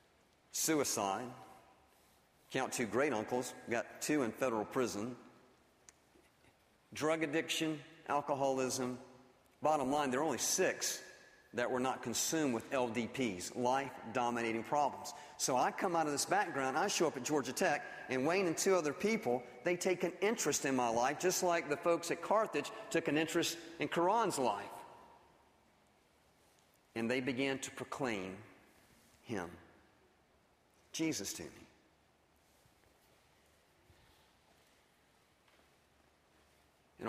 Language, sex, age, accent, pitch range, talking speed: English, male, 40-59, American, 105-150 Hz, 120 wpm